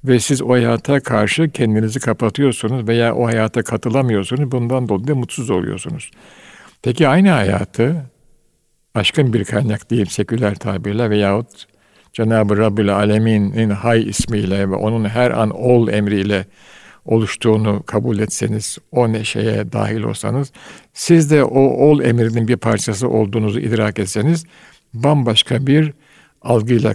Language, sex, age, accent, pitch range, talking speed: Turkish, male, 60-79, native, 110-135 Hz, 125 wpm